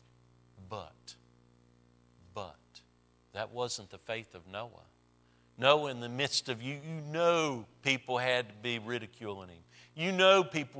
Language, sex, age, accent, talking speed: English, male, 50-69, American, 140 wpm